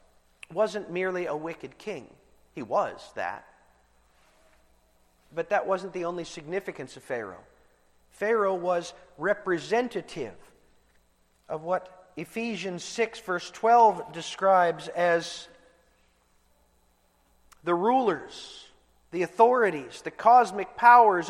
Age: 40-59